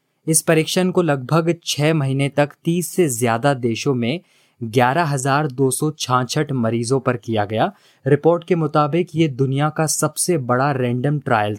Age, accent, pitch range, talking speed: 20-39, native, 125-155 Hz, 135 wpm